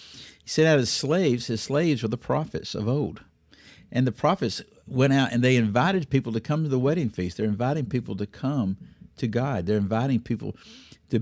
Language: English